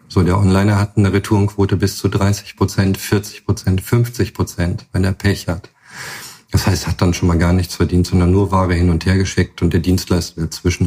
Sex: male